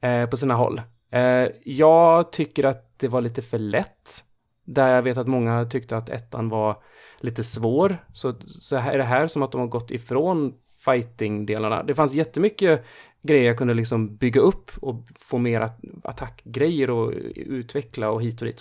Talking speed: 180 wpm